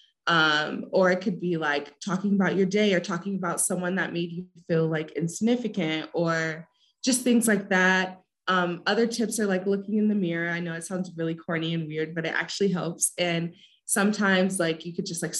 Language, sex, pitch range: English, female, 165-195 Hz